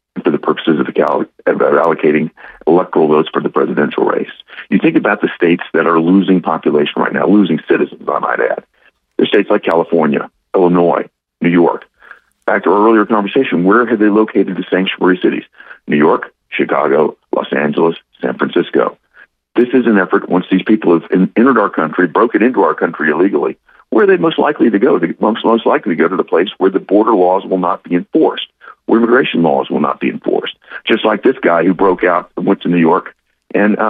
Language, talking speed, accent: English, 205 wpm, American